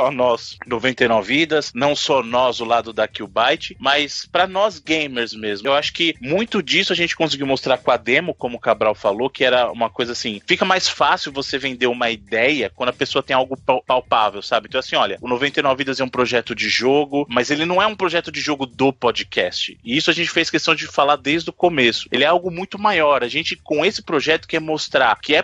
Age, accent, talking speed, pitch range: 20-39, Brazilian, 225 wpm, 125-175 Hz